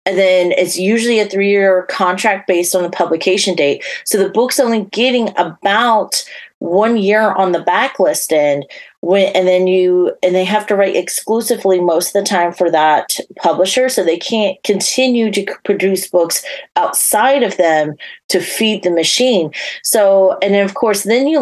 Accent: American